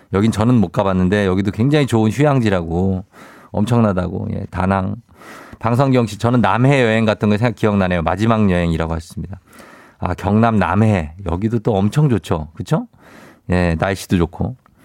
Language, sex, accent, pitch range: Korean, male, native, 95-150 Hz